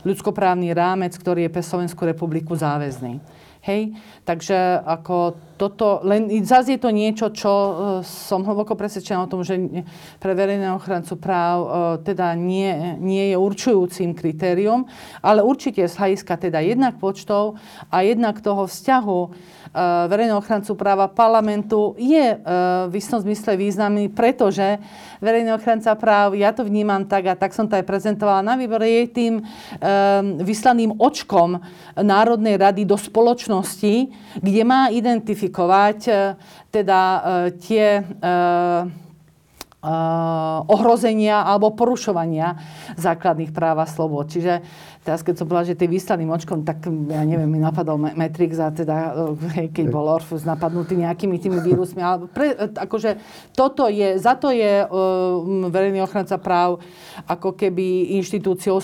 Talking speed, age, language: 140 wpm, 40-59, Slovak